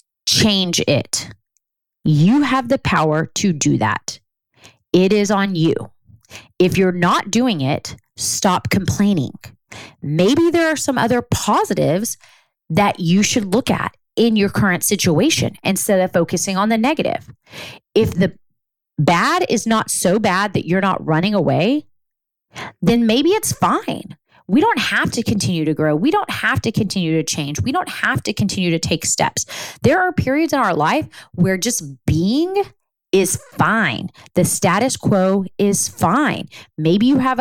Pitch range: 170-235 Hz